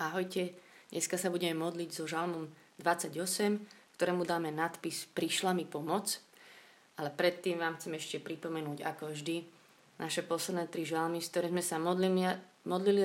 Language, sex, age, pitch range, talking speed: Slovak, female, 20-39, 160-185 Hz, 140 wpm